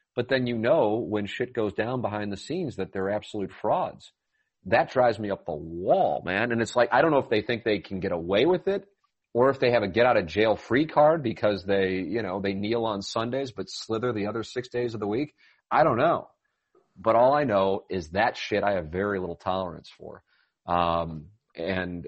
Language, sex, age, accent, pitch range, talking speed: English, male, 40-59, American, 90-110 Hz, 225 wpm